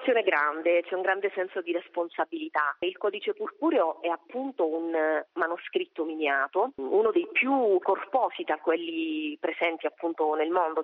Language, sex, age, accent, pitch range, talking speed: Italian, female, 30-49, native, 155-230 Hz, 140 wpm